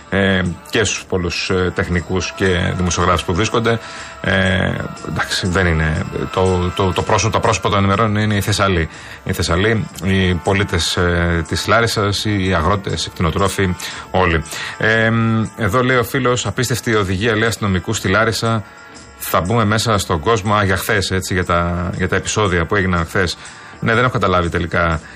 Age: 30-49